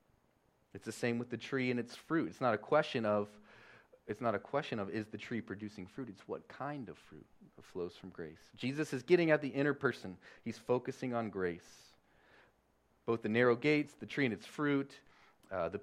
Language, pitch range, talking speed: English, 105-135 Hz, 205 wpm